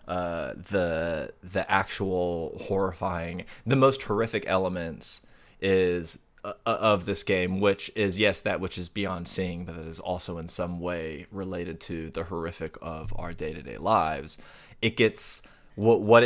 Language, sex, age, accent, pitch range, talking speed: English, male, 20-39, American, 90-110 Hz, 150 wpm